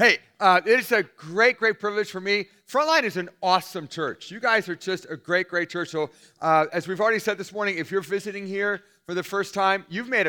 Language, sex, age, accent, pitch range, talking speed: English, male, 40-59, American, 165-215 Hz, 240 wpm